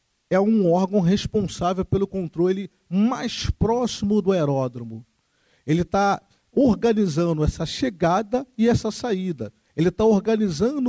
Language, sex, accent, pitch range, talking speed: Portuguese, male, Brazilian, 150-215 Hz, 115 wpm